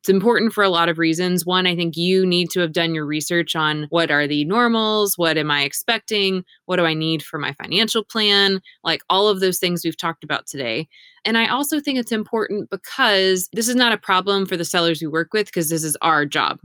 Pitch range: 165-205 Hz